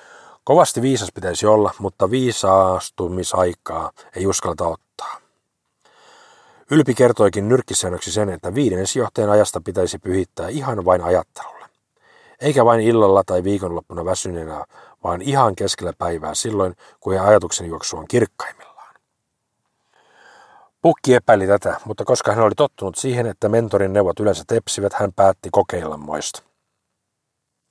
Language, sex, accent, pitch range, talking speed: Finnish, male, native, 90-125 Hz, 125 wpm